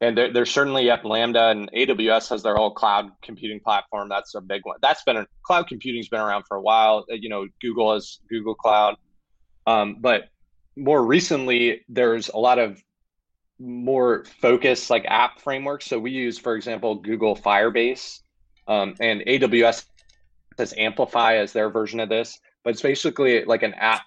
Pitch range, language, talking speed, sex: 105-120 Hz, English, 175 wpm, male